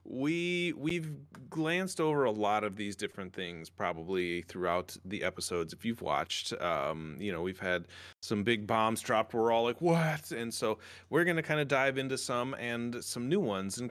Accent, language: American, English